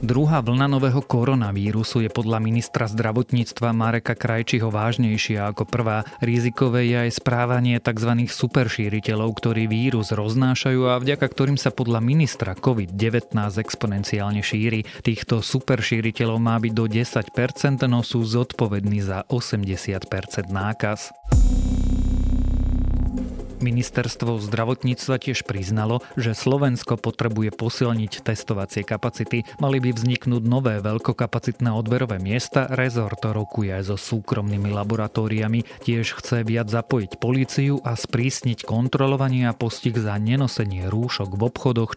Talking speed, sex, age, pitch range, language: 115 wpm, male, 30-49, 105-125 Hz, Slovak